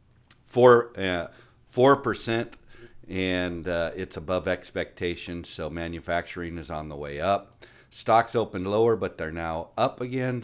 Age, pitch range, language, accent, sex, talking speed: 50-69, 95-125 Hz, English, American, male, 130 wpm